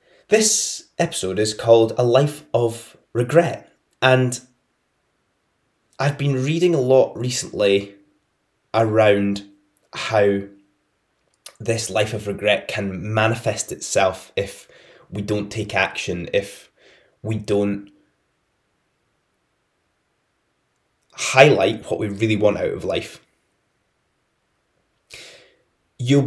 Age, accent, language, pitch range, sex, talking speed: 20-39, British, English, 100-130 Hz, male, 95 wpm